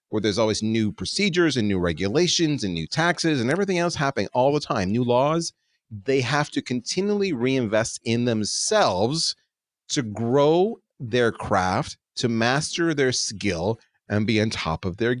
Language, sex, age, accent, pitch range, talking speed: English, male, 40-59, American, 100-140 Hz, 160 wpm